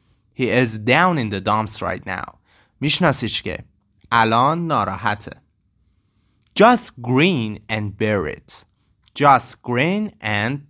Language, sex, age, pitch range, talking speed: Persian, male, 30-49, 105-145 Hz, 110 wpm